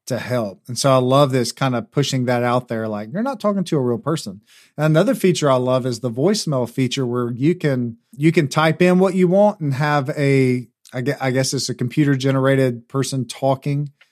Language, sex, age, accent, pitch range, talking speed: English, male, 40-59, American, 125-150 Hz, 225 wpm